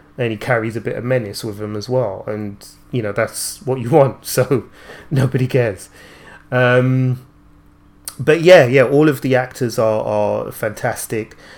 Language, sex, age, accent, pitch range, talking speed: English, male, 30-49, British, 105-125 Hz, 165 wpm